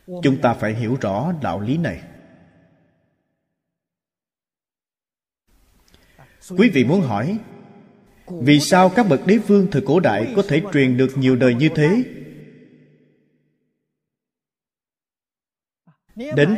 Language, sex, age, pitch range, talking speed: Vietnamese, male, 30-49, 130-205 Hz, 110 wpm